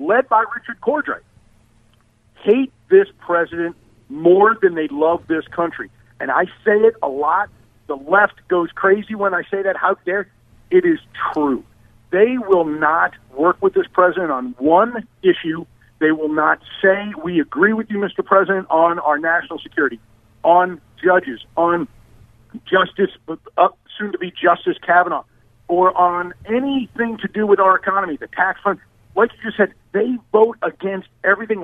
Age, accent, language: 50-69, American, English